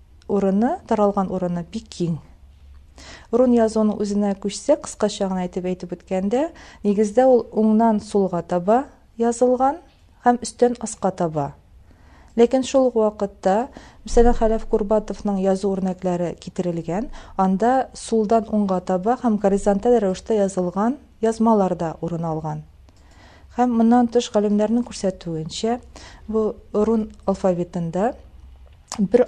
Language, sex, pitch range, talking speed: Russian, female, 180-225 Hz, 90 wpm